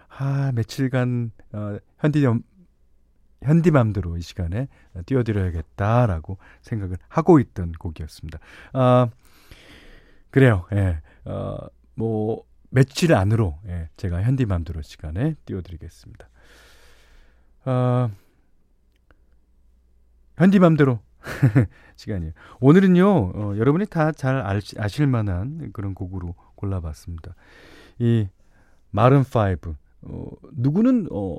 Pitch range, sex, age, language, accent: 85-135 Hz, male, 40-59, Korean, native